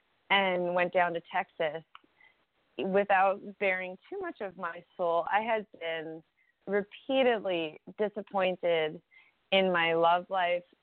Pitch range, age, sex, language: 170-210 Hz, 20-39, female, English